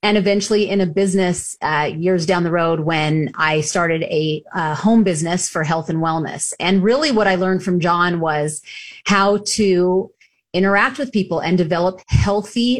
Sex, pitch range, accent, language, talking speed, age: female, 175-210 Hz, American, English, 175 wpm, 30-49